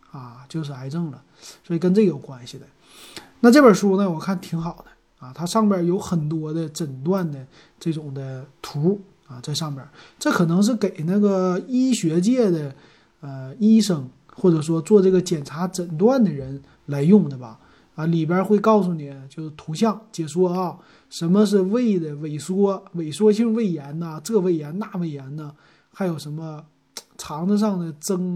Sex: male